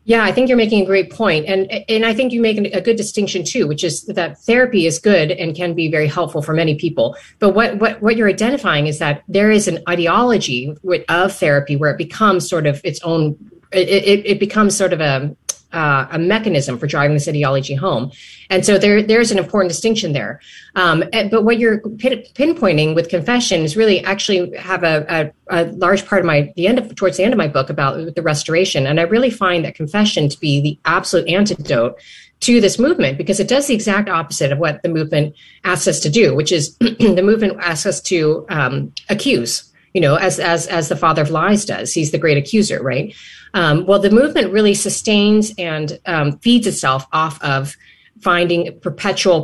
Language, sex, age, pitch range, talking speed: English, female, 30-49, 155-210 Hz, 210 wpm